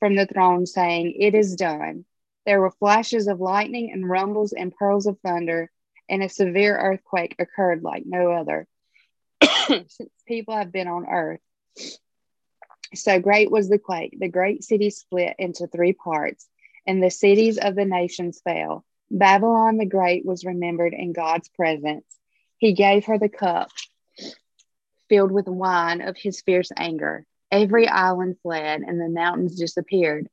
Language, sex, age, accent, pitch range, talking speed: English, female, 30-49, American, 175-205 Hz, 155 wpm